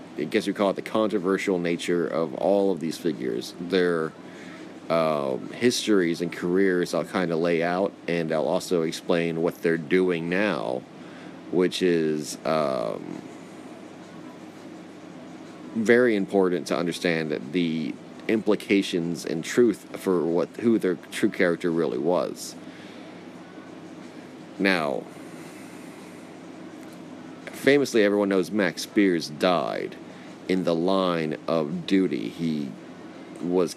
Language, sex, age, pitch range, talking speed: English, male, 30-49, 85-95 Hz, 115 wpm